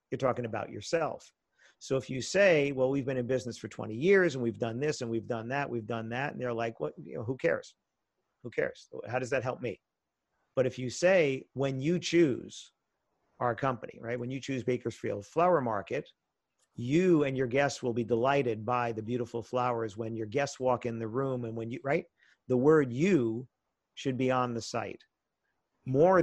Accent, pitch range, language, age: American, 115-140 Hz, English, 50-69